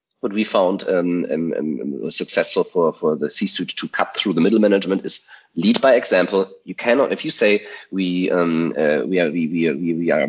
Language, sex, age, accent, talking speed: English, male, 30-49, German, 215 wpm